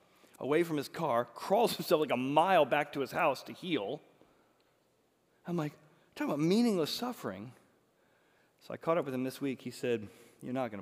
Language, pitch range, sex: English, 110-145 Hz, male